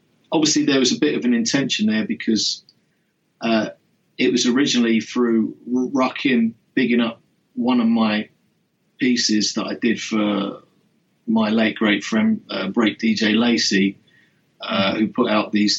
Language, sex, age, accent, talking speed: English, male, 40-59, British, 150 wpm